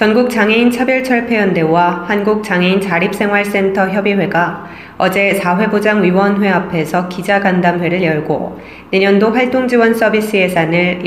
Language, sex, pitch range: Korean, female, 175-205 Hz